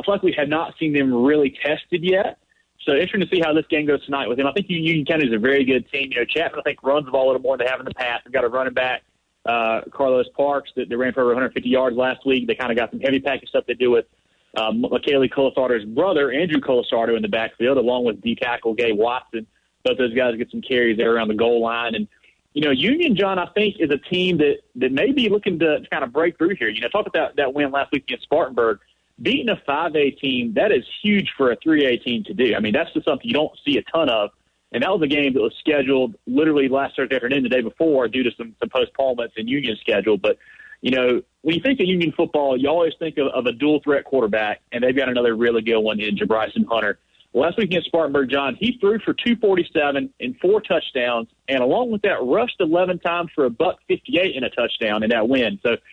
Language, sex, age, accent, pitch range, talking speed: English, male, 30-49, American, 125-170 Hz, 255 wpm